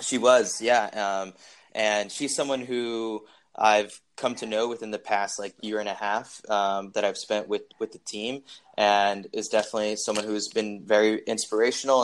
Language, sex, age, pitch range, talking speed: English, male, 20-39, 100-120 Hz, 185 wpm